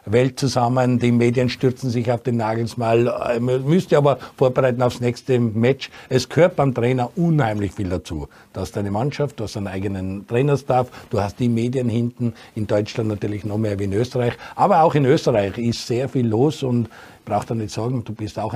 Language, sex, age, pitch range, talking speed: German, male, 60-79, 110-140 Hz, 195 wpm